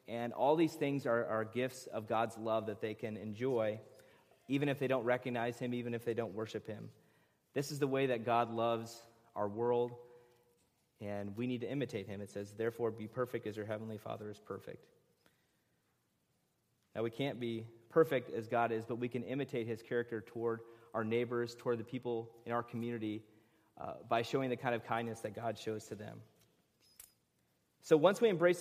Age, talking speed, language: 30-49, 190 wpm, English